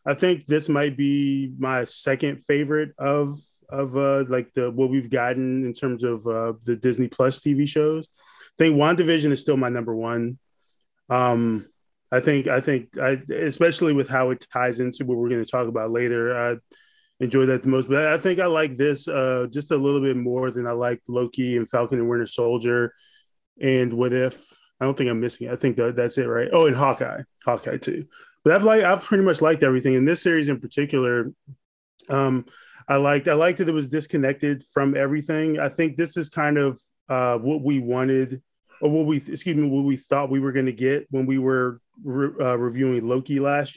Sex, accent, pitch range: male, American, 125-145 Hz